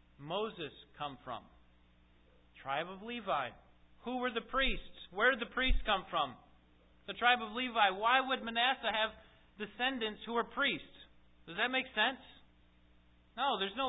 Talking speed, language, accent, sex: 155 wpm, English, American, male